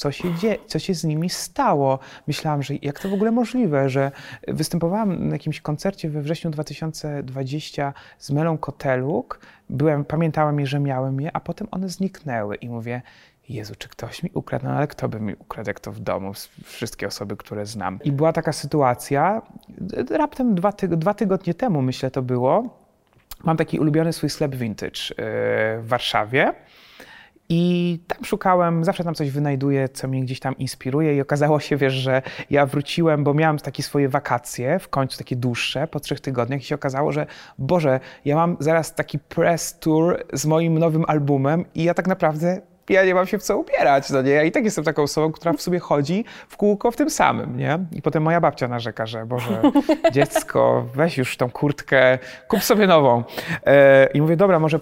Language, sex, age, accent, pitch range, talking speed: Polish, male, 30-49, native, 135-170 Hz, 185 wpm